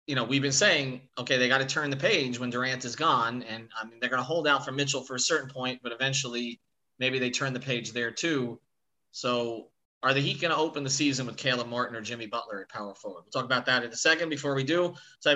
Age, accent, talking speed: 30-49, American, 265 wpm